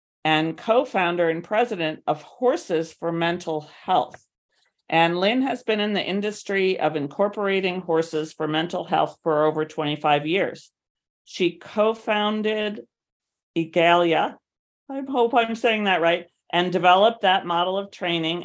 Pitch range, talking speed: 160-205 Hz, 135 wpm